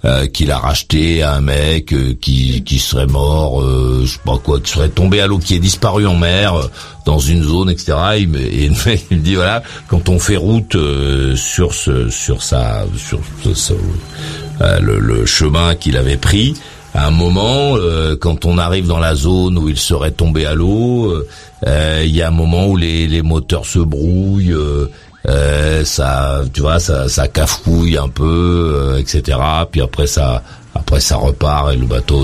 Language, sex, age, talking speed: French, male, 50-69, 200 wpm